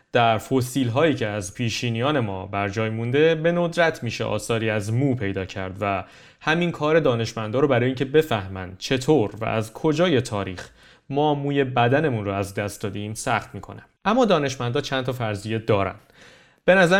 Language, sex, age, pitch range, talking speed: Persian, male, 30-49, 110-150 Hz, 170 wpm